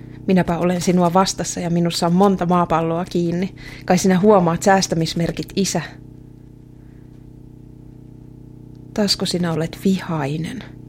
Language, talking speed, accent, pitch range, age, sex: Finnish, 105 wpm, native, 145-185 Hz, 30-49, female